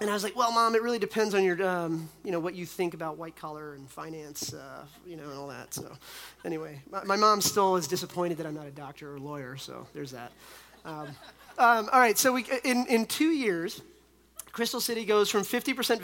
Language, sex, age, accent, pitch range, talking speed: English, male, 30-49, American, 160-200 Hz, 230 wpm